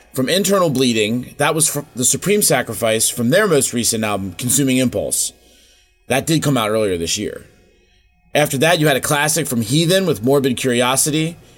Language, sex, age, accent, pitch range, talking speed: English, male, 30-49, American, 120-155 Hz, 175 wpm